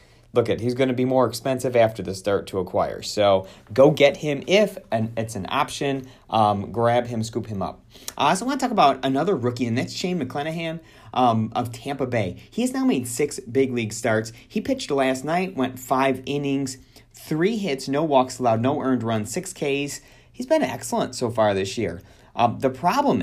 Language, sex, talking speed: English, male, 205 wpm